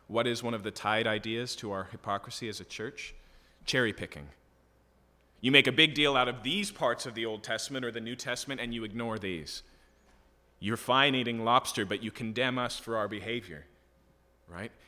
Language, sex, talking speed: English, male, 195 wpm